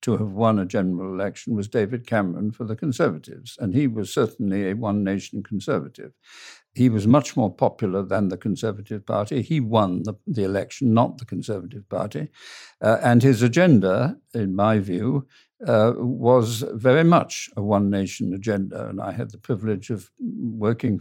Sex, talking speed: male, 165 wpm